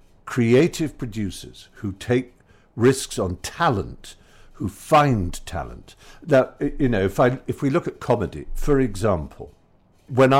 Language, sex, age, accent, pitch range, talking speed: English, male, 50-69, British, 90-135 Hz, 135 wpm